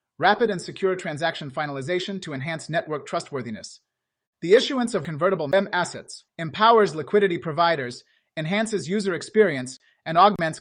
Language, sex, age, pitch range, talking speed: English, male, 30-49, 160-200 Hz, 130 wpm